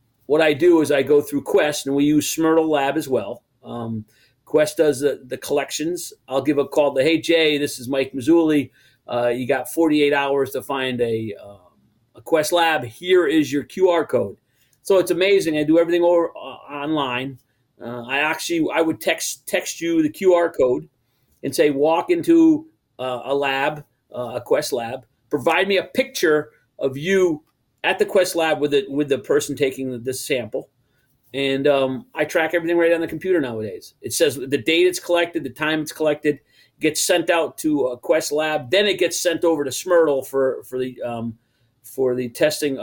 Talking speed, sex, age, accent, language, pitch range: 195 wpm, male, 40-59, American, English, 130-165 Hz